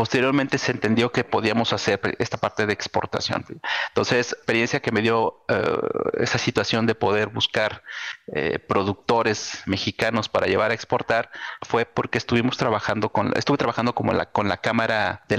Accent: Mexican